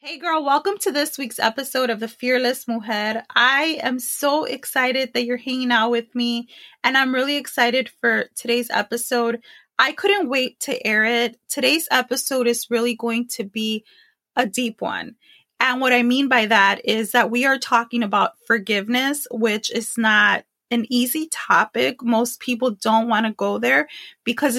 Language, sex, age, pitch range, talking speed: English, female, 20-39, 230-270 Hz, 170 wpm